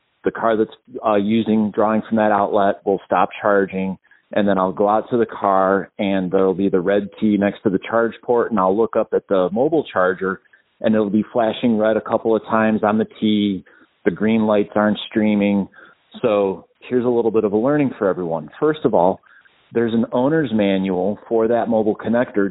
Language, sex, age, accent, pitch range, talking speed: English, male, 40-59, American, 100-115 Hz, 205 wpm